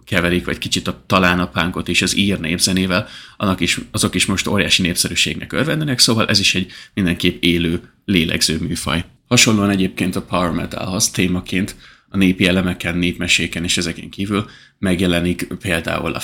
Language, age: Hungarian, 30-49